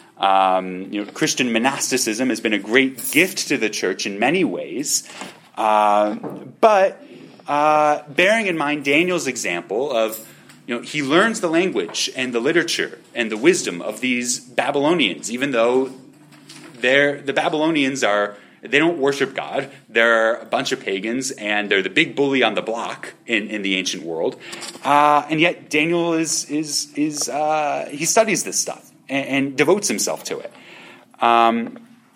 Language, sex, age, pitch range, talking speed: English, male, 30-49, 115-170 Hz, 160 wpm